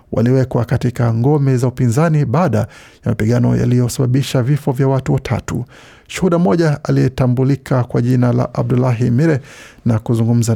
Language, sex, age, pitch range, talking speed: Swahili, male, 50-69, 120-135 Hz, 130 wpm